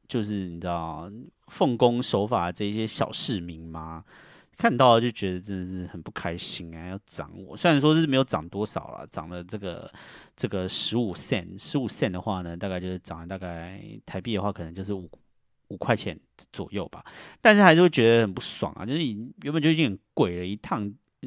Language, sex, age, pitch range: Chinese, male, 30-49, 90-125 Hz